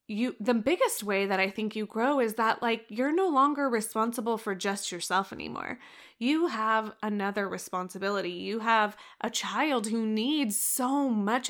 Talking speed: 165 wpm